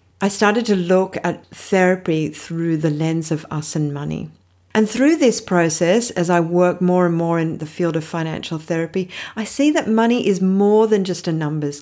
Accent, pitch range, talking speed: Australian, 165-220 Hz, 200 wpm